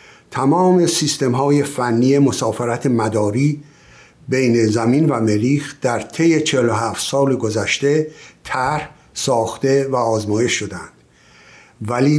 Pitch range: 115-145 Hz